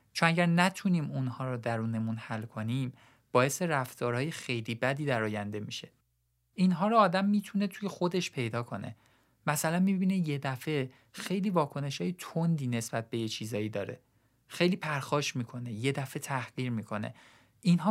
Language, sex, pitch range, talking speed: Persian, male, 120-165 Hz, 145 wpm